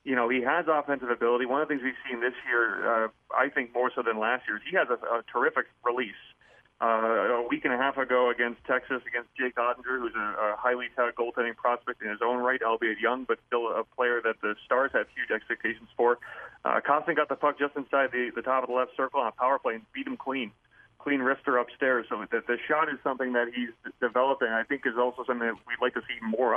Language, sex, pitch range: English, male, 120-145 Hz